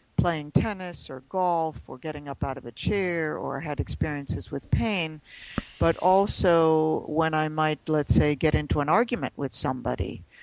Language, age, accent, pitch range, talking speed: English, 60-79, American, 140-165 Hz, 165 wpm